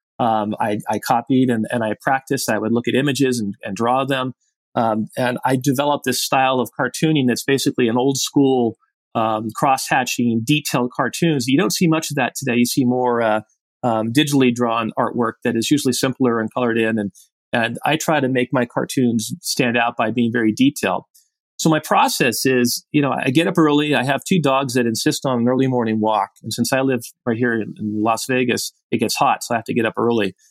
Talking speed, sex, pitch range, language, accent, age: 220 wpm, male, 120-140 Hz, English, American, 40-59